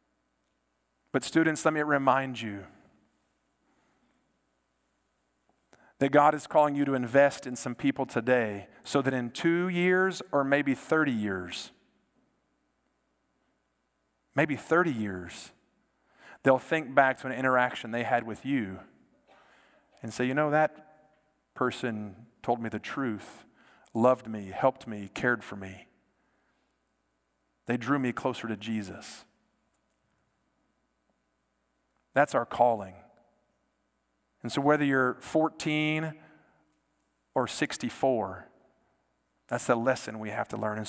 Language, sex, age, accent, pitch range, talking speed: English, male, 40-59, American, 90-145 Hz, 115 wpm